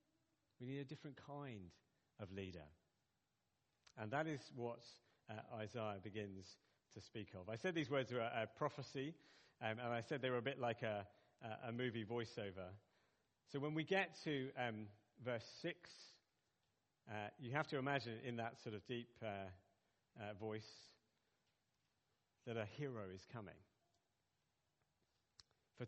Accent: British